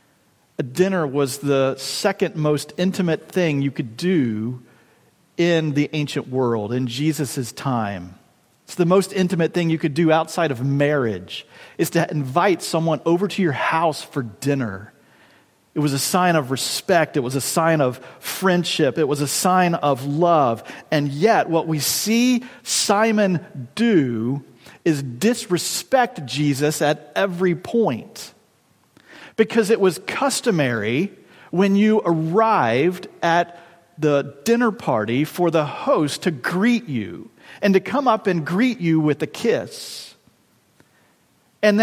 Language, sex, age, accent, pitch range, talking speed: English, male, 40-59, American, 150-200 Hz, 140 wpm